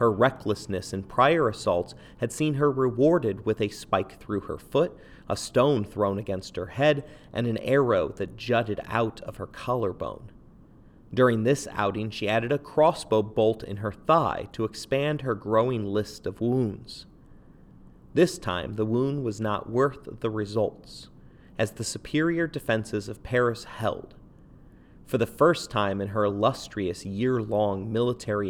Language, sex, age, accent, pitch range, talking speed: English, male, 30-49, American, 100-130 Hz, 155 wpm